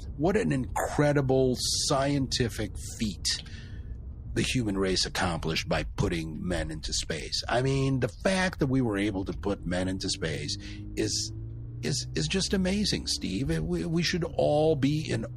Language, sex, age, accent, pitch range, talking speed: English, male, 50-69, American, 90-135 Hz, 155 wpm